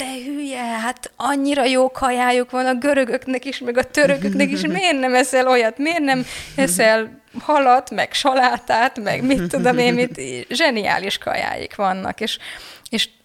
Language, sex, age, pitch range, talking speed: Hungarian, female, 20-39, 205-245 Hz, 155 wpm